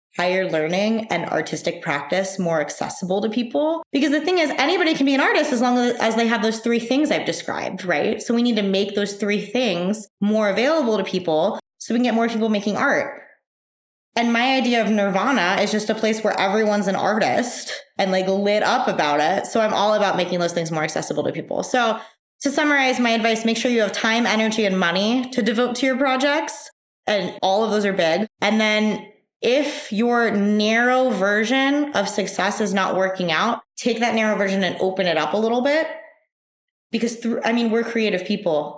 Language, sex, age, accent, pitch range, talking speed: English, female, 20-39, American, 190-240 Hz, 205 wpm